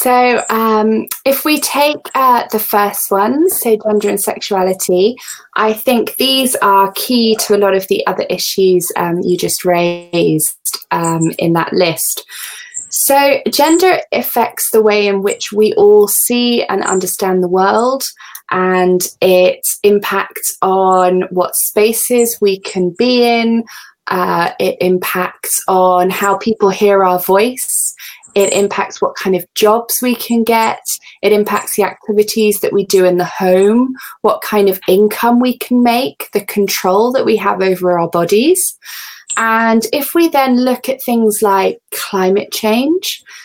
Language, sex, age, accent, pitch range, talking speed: Italian, female, 20-39, British, 190-245 Hz, 150 wpm